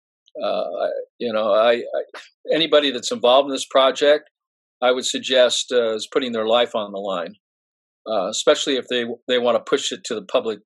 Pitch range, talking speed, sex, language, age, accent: 125-155 Hz, 190 wpm, male, English, 50-69, American